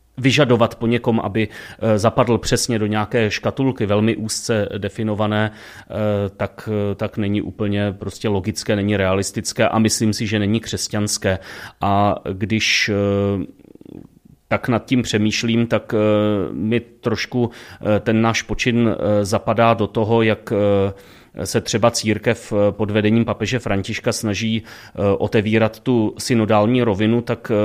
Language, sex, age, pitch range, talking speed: Czech, male, 30-49, 105-115 Hz, 120 wpm